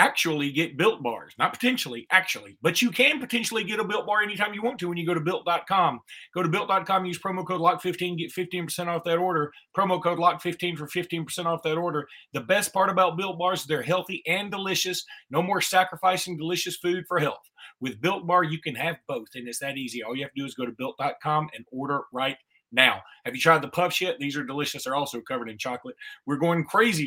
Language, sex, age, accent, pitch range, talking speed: English, male, 30-49, American, 140-185 Hz, 230 wpm